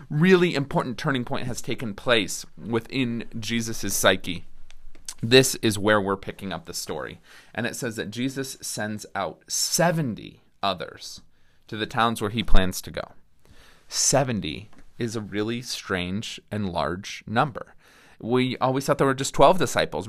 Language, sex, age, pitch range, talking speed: English, male, 30-49, 100-130 Hz, 150 wpm